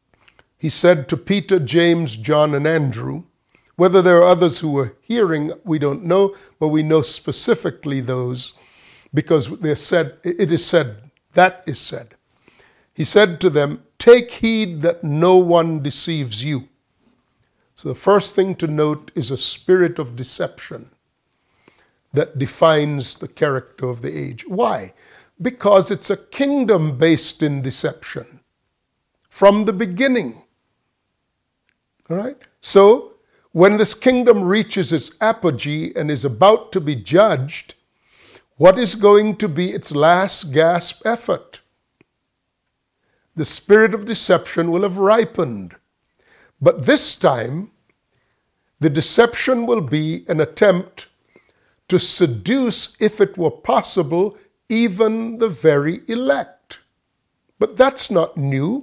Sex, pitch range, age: male, 150-205 Hz, 50-69